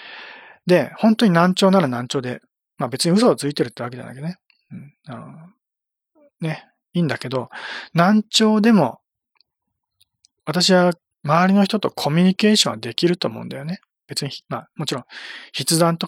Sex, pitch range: male, 135-190 Hz